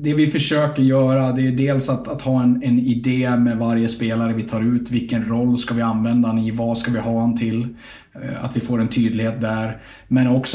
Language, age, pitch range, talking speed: Swedish, 30-49, 115-135 Hz, 230 wpm